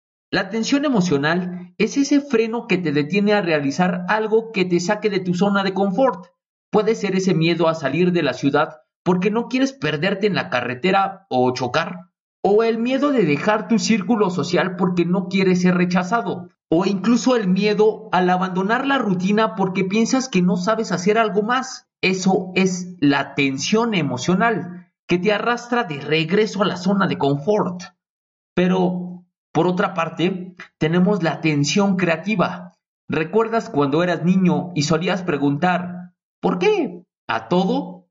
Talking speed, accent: 160 wpm, Mexican